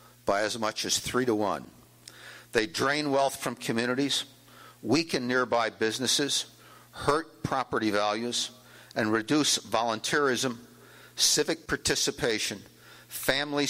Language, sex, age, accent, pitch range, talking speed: English, male, 60-79, American, 110-135 Hz, 105 wpm